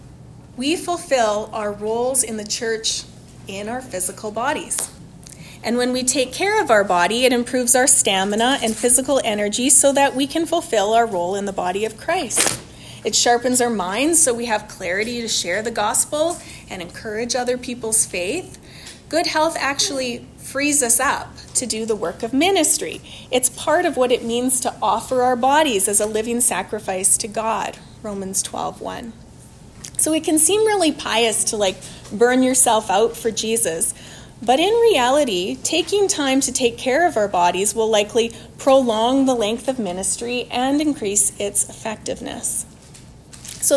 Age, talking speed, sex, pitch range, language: 30-49, 165 wpm, female, 215-270 Hz, English